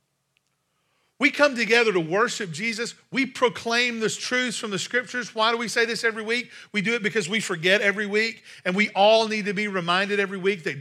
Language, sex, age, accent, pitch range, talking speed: English, male, 50-69, American, 185-230 Hz, 210 wpm